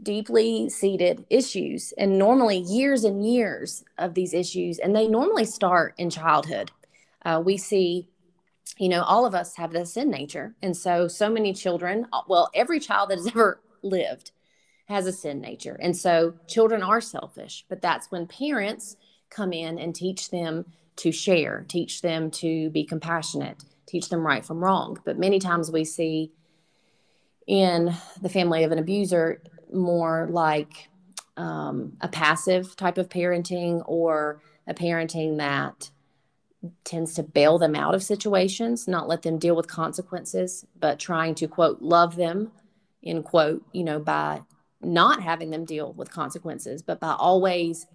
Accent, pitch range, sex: American, 160-190 Hz, female